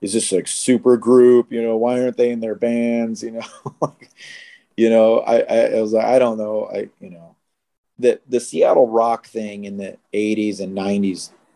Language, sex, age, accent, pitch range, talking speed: English, male, 40-59, American, 95-115 Hz, 195 wpm